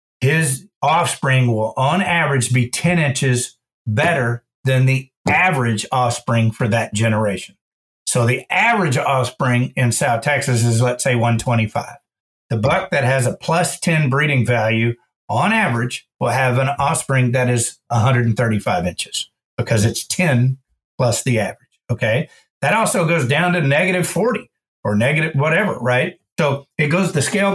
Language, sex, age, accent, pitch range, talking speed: English, male, 50-69, American, 125-165 Hz, 150 wpm